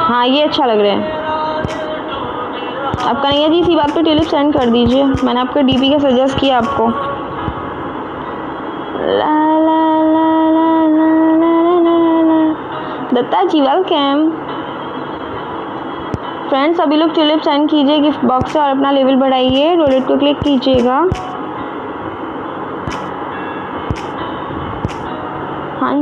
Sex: female